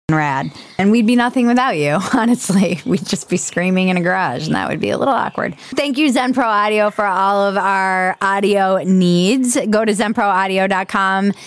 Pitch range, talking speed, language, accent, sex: 200-255 Hz, 185 wpm, English, American, female